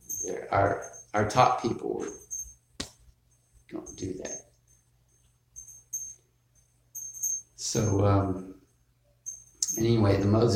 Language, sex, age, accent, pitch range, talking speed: English, male, 50-69, American, 95-120 Hz, 70 wpm